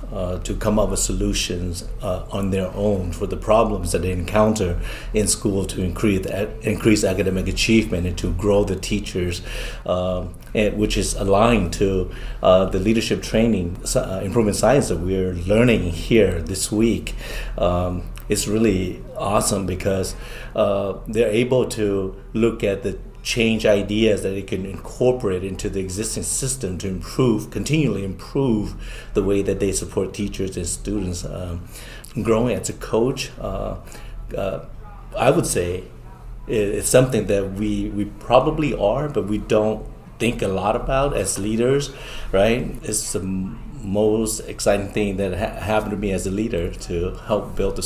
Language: English